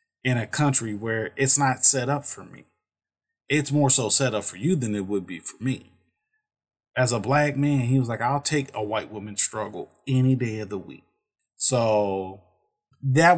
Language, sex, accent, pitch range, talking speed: English, male, American, 110-135 Hz, 195 wpm